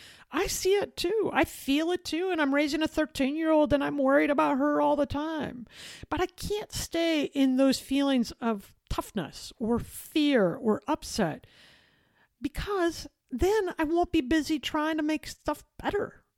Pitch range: 215-290 Hz